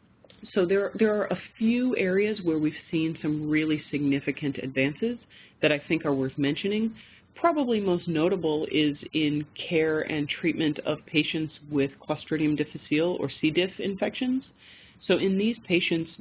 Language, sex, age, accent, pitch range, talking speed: English, female, 40-59, American, 140-165 Hz, 150 wpm